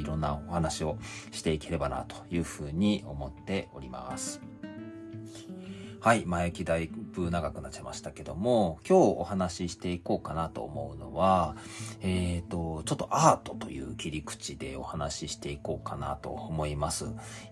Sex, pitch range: male, 80-110 Hz